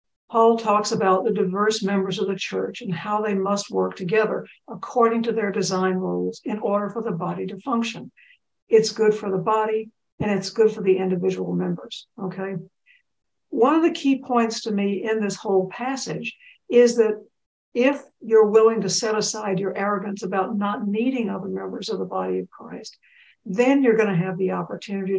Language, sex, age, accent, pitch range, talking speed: English, female, 60-79, American, 195-225 Hz, 185 wpm